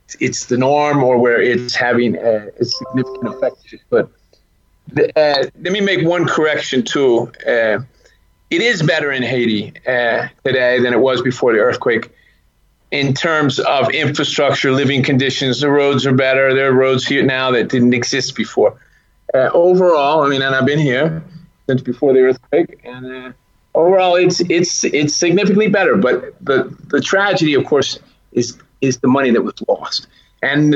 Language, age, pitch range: English, 30-49, 125-150 Hz